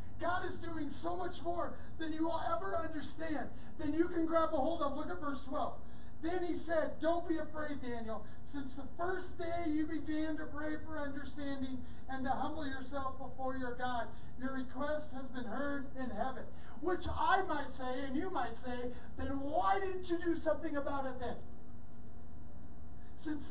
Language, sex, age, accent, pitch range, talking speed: English, male, 40-59, American, 265-325 Hz, 180 wpm